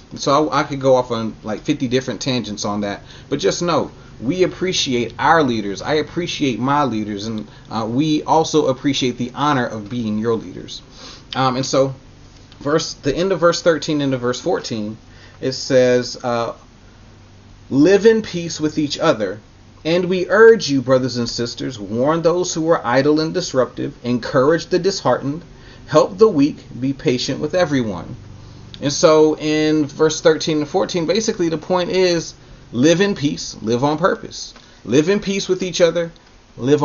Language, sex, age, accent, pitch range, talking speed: English, male, 30-49, American, 125-155 Hz, 170 wpm